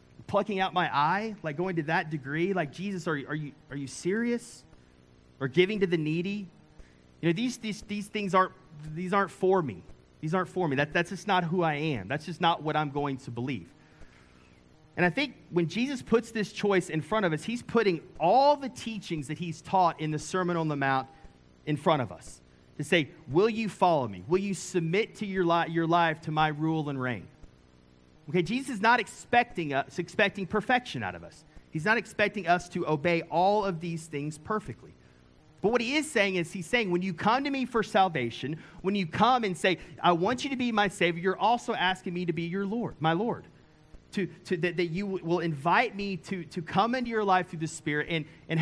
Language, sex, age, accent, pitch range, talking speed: English, male, 30-49, American, 155-200 Hz, 220 wpm